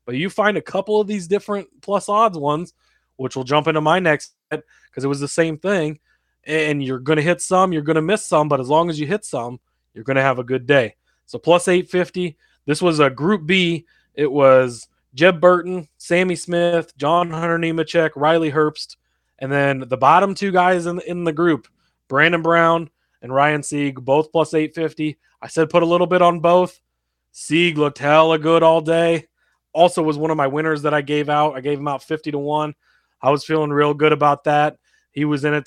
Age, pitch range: 20-39, 140-170 Hz